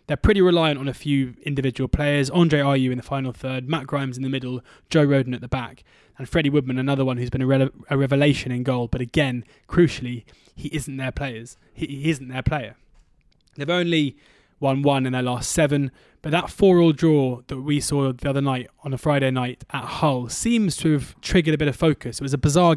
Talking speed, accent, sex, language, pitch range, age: 220 wpm, British, male, English, 130-155 Hz, 20-39